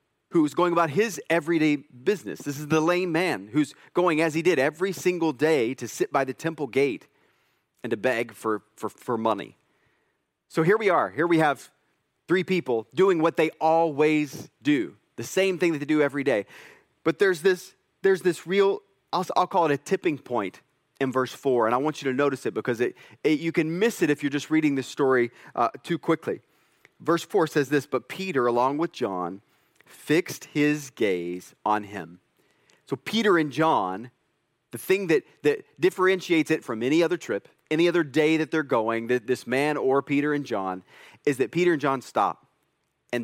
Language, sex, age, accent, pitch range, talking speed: English, male, 30-49, American, 135-175 Hz, 195 wpm